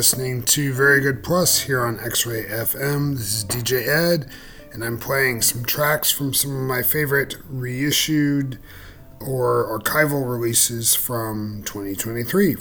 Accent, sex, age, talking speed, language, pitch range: American, male, 40-59, 145 wpm, English, 100-130 Hz